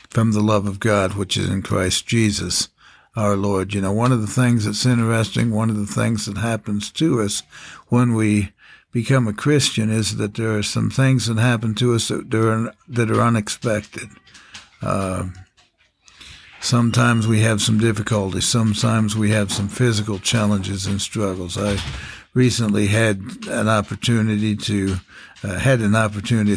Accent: American